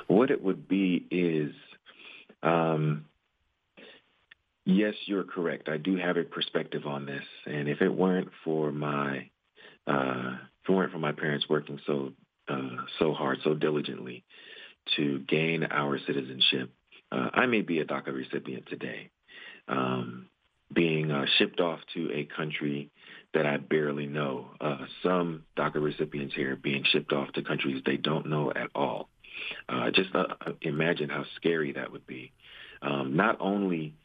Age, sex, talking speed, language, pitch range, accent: 40-59, male, 155 wpm, English, 70-85 Hz, American